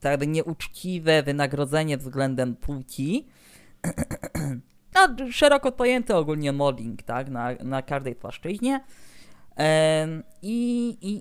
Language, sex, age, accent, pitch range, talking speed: Polish, female, 20-39, native, 130-200 Hz, 95 wpm